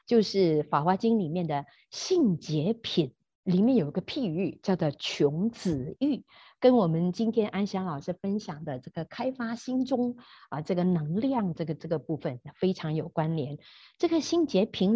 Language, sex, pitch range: Chinese, female, 160-230 Hz